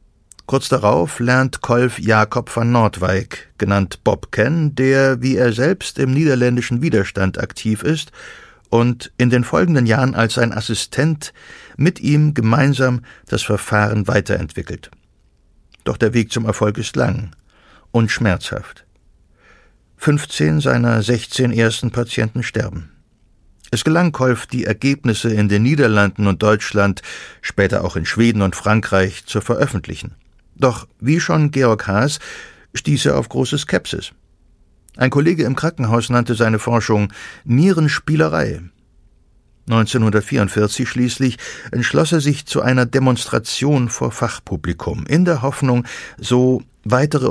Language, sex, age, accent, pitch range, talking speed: German, male, 60-79, German, 105-130 Hz, 125 wpm